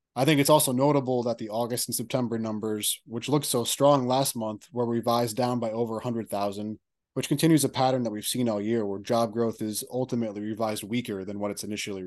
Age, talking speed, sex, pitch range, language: 20-39, 215 wpm, male, 110-130 Hz, English